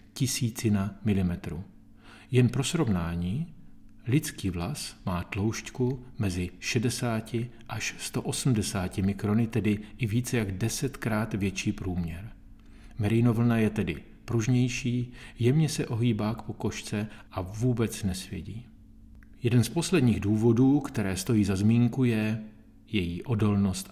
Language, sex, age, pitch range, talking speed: Czech, male, 40-59, 100-120 Hz, 115 wpm